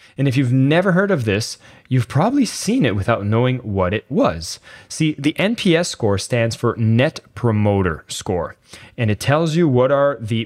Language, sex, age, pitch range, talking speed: English, male, 20-39, 105-140 Hz, 185 wpm